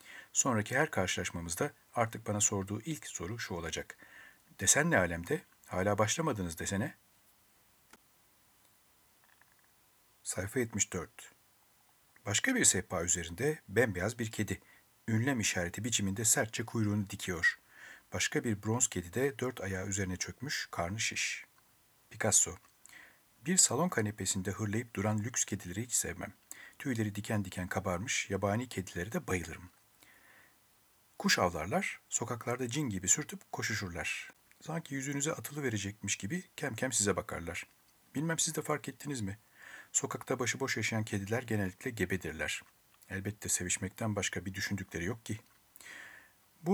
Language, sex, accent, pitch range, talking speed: Turkish, male, native, 95-130 Hz, 125 wpm